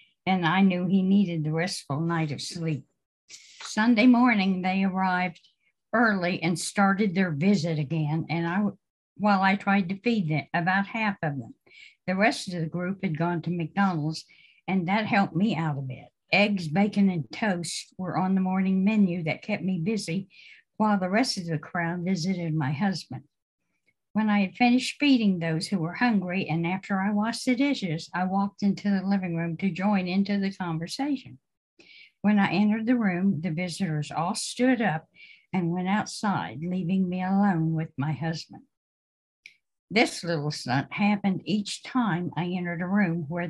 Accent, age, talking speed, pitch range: American, 60-79, 170 wpm, 165-205 Hz